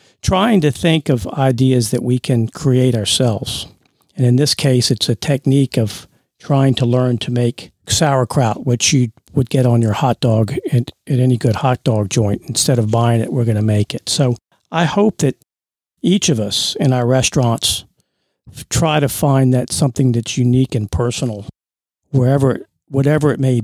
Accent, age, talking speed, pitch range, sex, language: American, 50-69, 180 wpm, 120-140 Hz, male, English